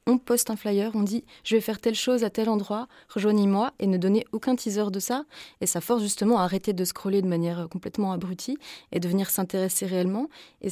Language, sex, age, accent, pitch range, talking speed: French, female, 20-39, French, 180-230 Hz, 225 wpm